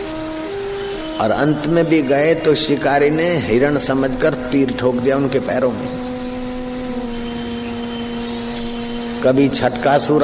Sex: male